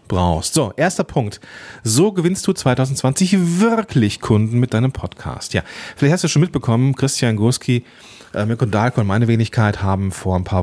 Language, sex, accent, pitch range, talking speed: German, male, German, 100-130 Hz, 170 wpm